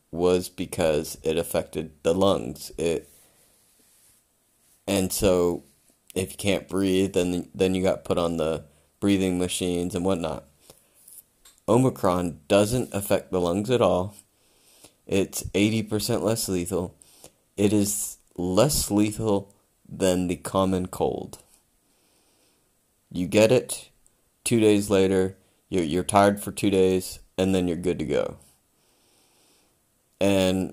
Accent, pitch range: American, 85-100 Hz